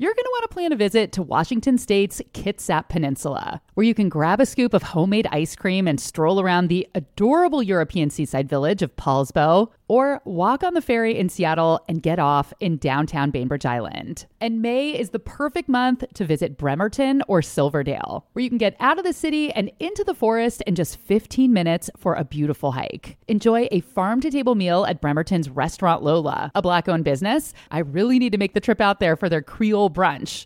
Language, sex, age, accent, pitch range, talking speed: English, female, 30-49, American, 160-235 Hz, 205 wpm